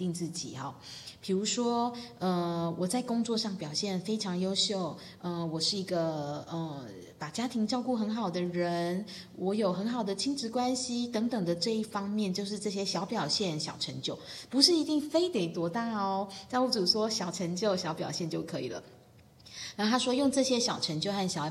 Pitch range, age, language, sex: 165-220 Hz, 20-39, Chinese, female